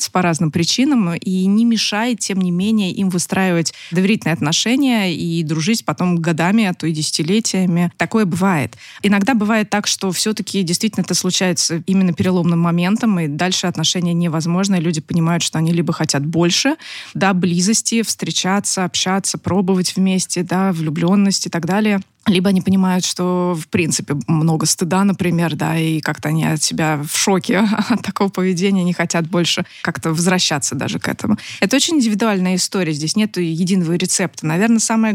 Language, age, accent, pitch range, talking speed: Russian, 20-39, native, 170-200 Hz, 165 wpm